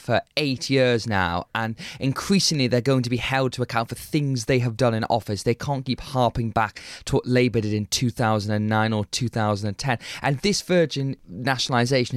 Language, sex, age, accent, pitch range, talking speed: English, male, 20-39, British, 115-145 Hz, 180 wpm